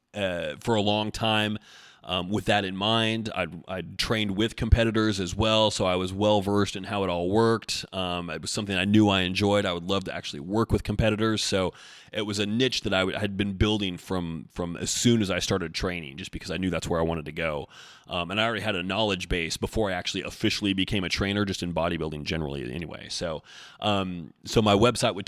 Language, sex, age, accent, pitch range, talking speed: English, male, 30-49, American, 95-110 Hz, 235 wpm